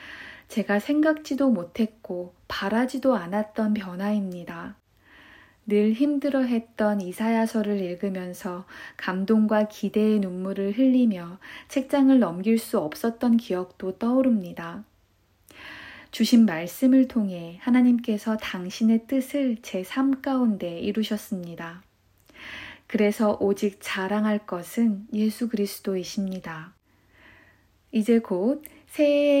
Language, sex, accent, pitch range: Korean, female, native, 190-240 Hz